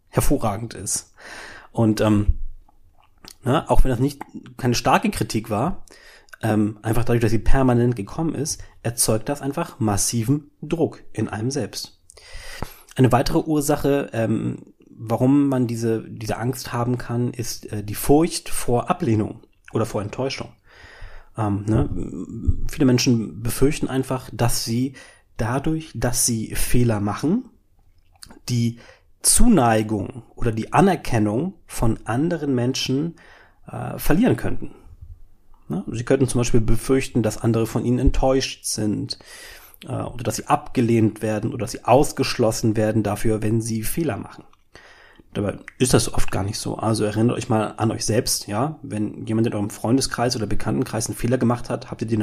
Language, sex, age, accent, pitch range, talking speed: German, male, 30-49, German, 110-130 Hz, 150 wpm